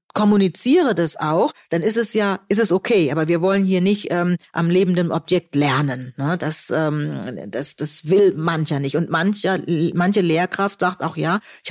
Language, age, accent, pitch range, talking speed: German, 40-59, German, 165-205 Hz, 185 wpm